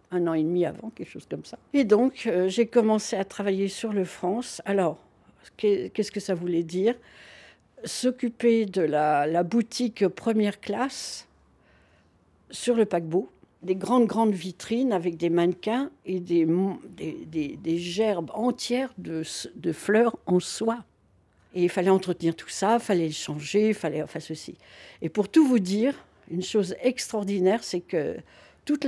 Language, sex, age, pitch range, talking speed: French, female, 60-79, 170-230 Hz, 170 wpm